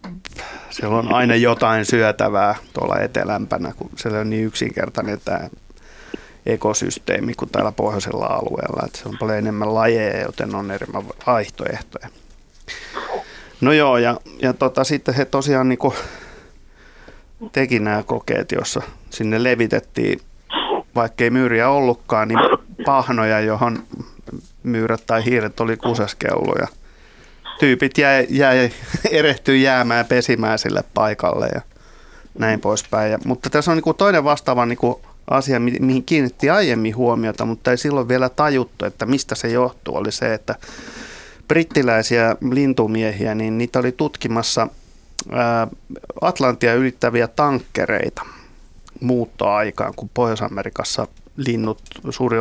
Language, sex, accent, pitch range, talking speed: Finnish, male, native, 110-130 Hz, 115 wpm